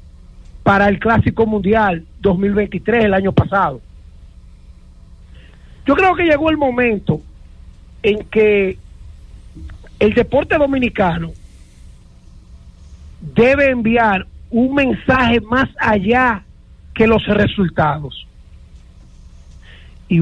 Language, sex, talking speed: English, male, 85 wpm